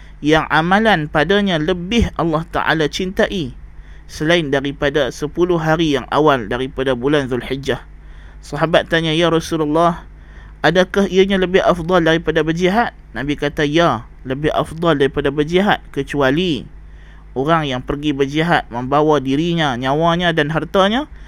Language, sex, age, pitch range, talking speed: Malay, male, 20-39, 135-170 Hz, 120 wpm